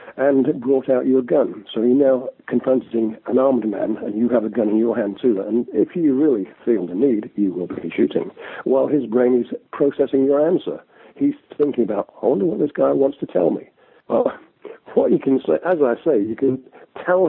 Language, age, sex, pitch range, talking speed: English, 60-79, male, 110-150 Hz, 220 wpm